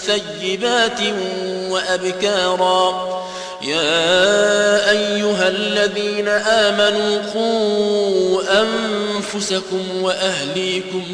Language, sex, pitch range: Arabic, male, 185-235 Hz